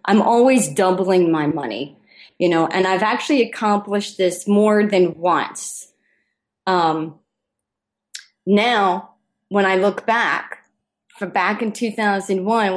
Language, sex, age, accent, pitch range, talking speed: English, female, 30-49, American, 170-205 Hz, 120 wpm